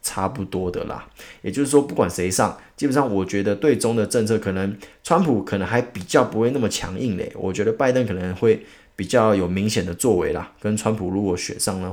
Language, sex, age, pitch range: Chinese, male, 20-39, 95-120 Hz